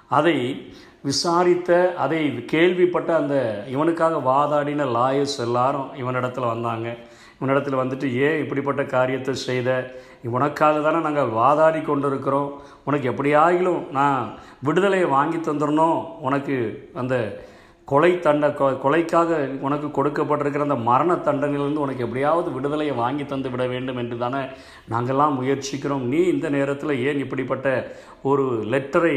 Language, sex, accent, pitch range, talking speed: Tamil, male, native, 130-150 Hz, 115 wpm